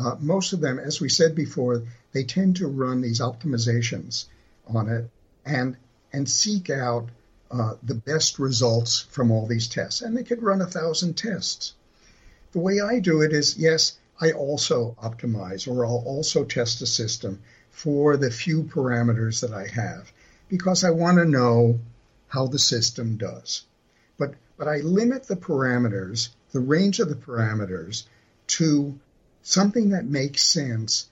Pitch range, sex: 115-155 Hz, male